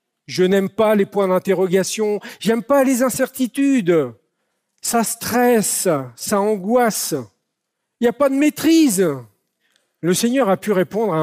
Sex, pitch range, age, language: male, 155-200 Hz, 50-69, French